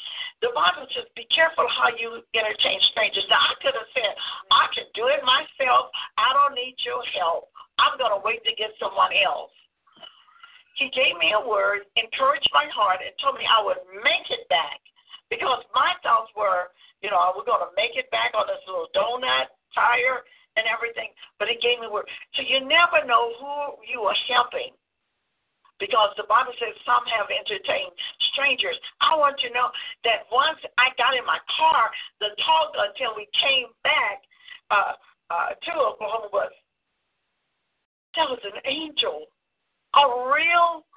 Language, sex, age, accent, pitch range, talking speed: English, female, 50-69, American, 225-345 Hz, 175 wpm